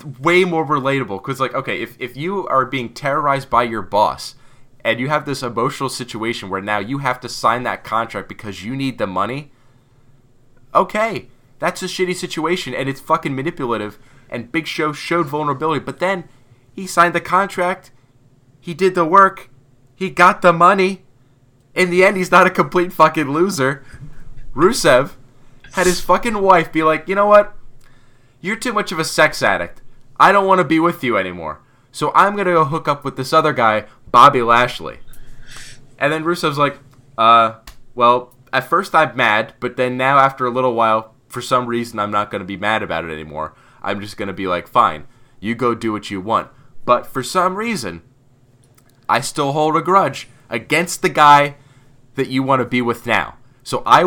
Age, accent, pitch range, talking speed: 20-39, American, 125-165 Hz, 190 wpm